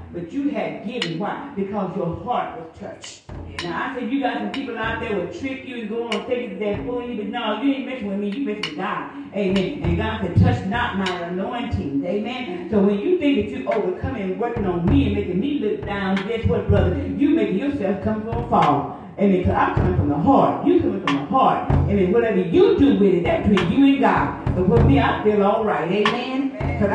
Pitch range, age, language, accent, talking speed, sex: 185-250 Hz, 40-59, English, American, 240 wpm, female